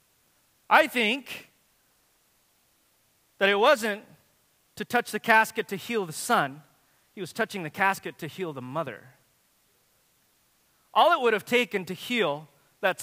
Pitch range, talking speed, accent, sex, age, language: 185-240 Hz, 140 wpm, American, male, 30-49, English